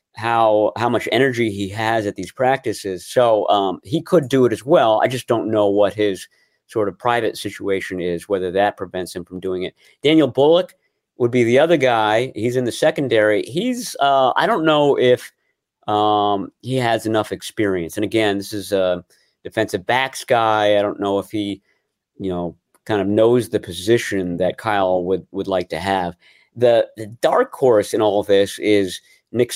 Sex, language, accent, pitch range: male, English, American, 100-120 Hz